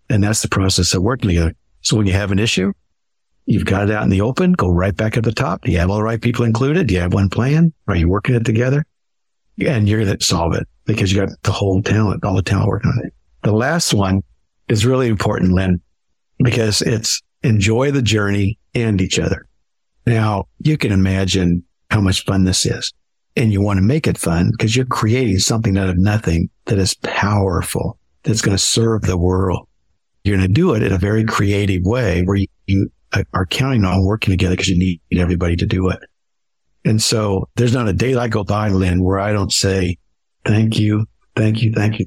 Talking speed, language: 220 wpm, English